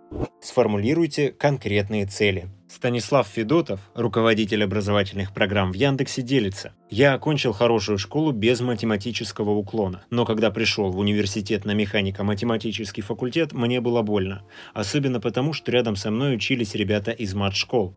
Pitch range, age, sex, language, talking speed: 105-125 Hz, 30-49, male, Russian, 130 wpm